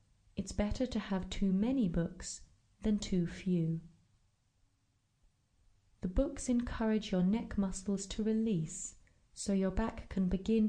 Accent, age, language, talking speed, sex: British, 30-49, English, 130 wpm, female